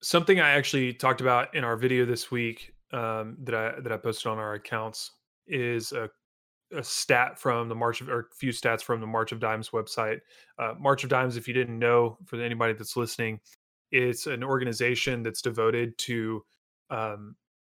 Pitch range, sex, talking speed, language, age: 110-135 Hz, male, 185 wpm, English, 20-39